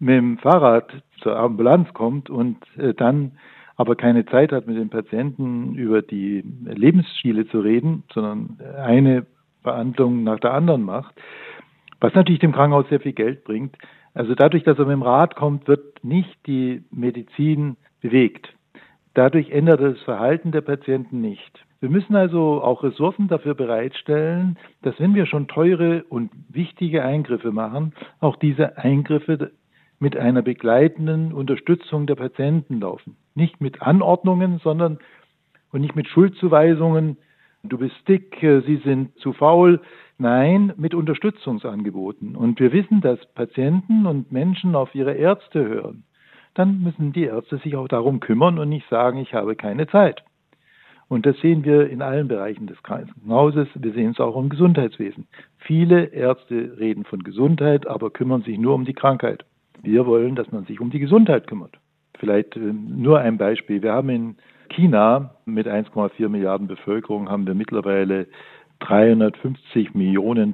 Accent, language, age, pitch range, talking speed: German, German, 60-79, 120-160 Hz, 150 wpm